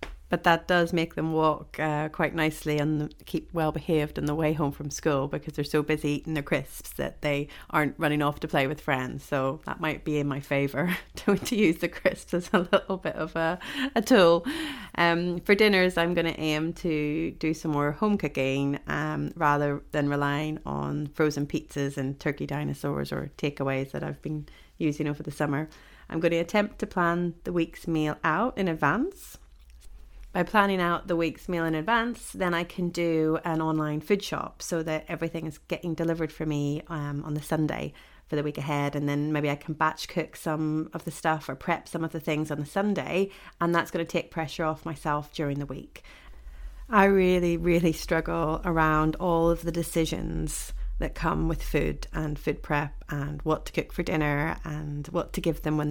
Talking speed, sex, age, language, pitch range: 205 wpm, female, 30-49, English, 145-170 Hz